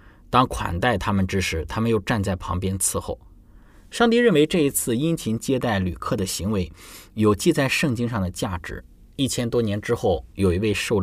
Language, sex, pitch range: Chinese, male, 90-120 Hz